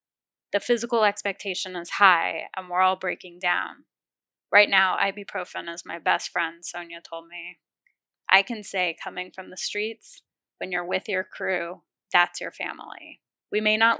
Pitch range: 180-210 Hz